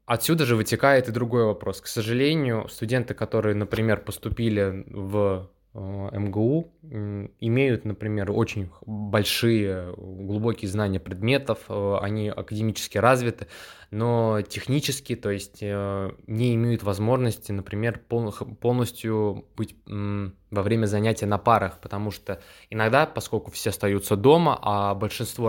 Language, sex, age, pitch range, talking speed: Russian, male, 20-39, 100-115 Hz, 115 wpm